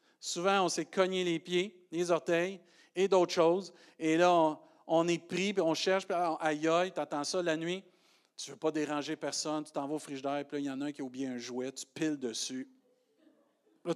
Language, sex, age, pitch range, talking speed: French, male, 50-69, 130-165 Hz, 240 wpm